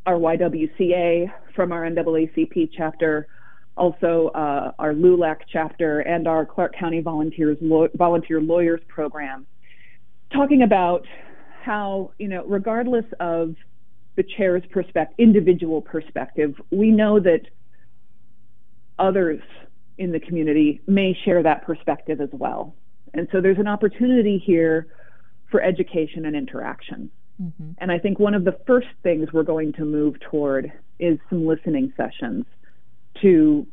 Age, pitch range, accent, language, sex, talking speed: 40-59, 155-195 Hz, American, English, female, 130 wpm